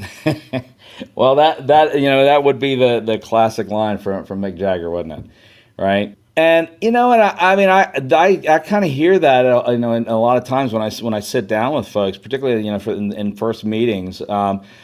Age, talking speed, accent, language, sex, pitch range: 40-59, 230 wpm, American, English, male, 115-145 Hz